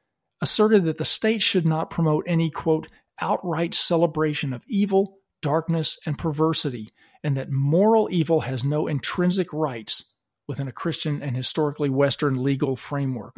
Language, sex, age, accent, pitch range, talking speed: English, male, 40-59, American, 140-170 Hz, 145 wpm